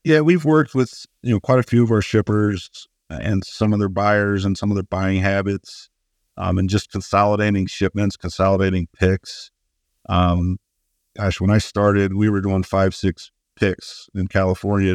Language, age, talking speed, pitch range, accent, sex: English, 50-69, 175 wpm, 90-100 Hz, American, male